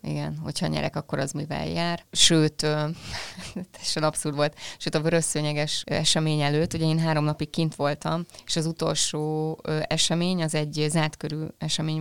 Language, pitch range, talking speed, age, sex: Hungarian, 150-175 Hz, 150 wpm, 30-49, female